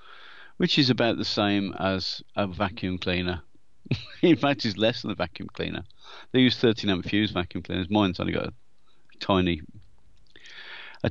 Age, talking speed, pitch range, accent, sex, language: 40-59, 160 wpm, 95-130 Hz, British, male, English